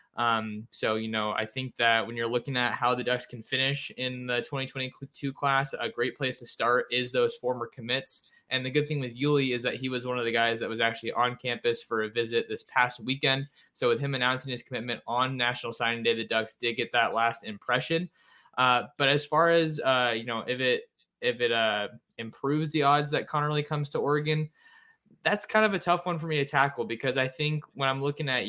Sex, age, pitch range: male, 20-39, 115-140 Hz